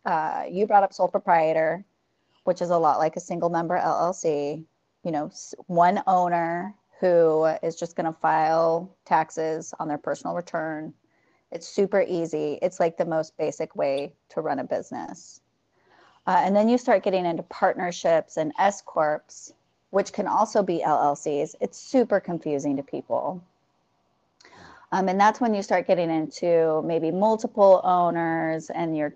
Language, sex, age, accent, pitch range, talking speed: English, female, 30-49, American, 165-200 Hz, 155 wpm